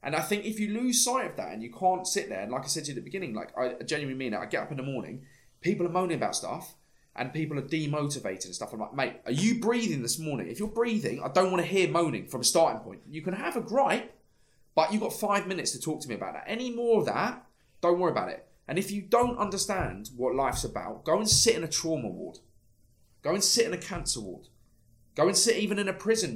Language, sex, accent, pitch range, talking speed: English, male, British, 120-185 Hz, 270 wpm